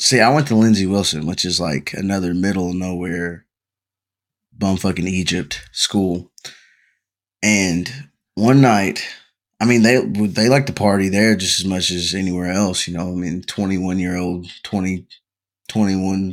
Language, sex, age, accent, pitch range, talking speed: English, male, 20-39, American, 90-105 Hz, 160 wpm